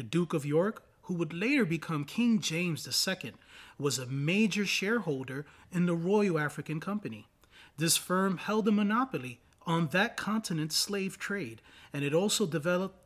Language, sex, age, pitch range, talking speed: English, male, 30-49, 140-205 Hz, 155 wpm